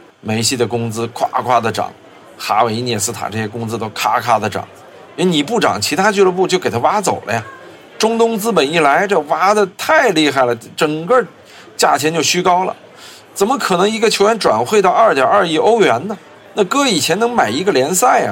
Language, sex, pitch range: Chinese, male, 115-175 Hz